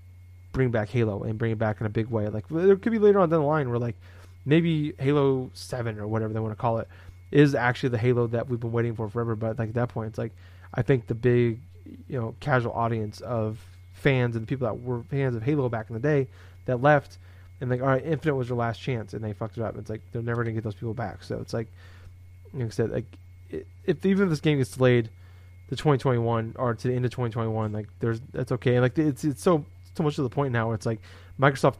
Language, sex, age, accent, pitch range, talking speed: English, male, 20-39, American, 105-135 Hz, 255 wpm